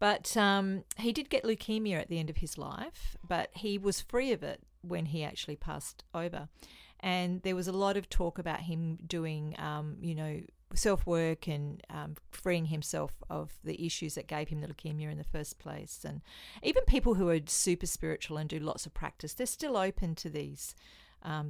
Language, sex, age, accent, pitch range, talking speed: English, female, 40-59, Australian, 150-180 Hz, 200 wpm